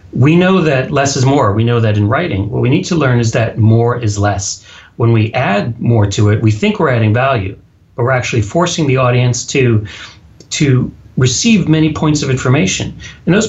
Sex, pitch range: male, 105-160 Hz